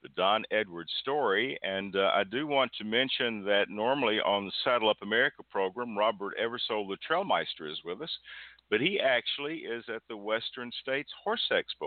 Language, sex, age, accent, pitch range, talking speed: English, male, 50-69, American, 100-130 Hz, 180 wpm